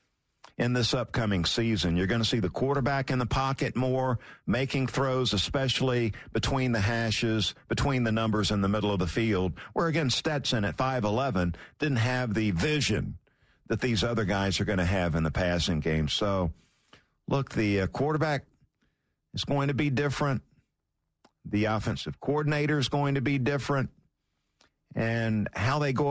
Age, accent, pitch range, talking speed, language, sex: 50-69, American, 105-150 Hz, 165 wpm, English, male